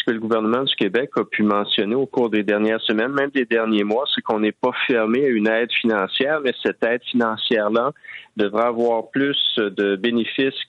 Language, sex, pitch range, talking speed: French, male, 100-120 Hz, 195 wpm